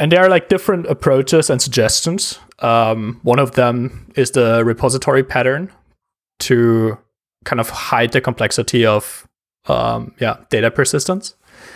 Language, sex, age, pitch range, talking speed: English, male, 20-39, 115-140 Hz, 140 wpm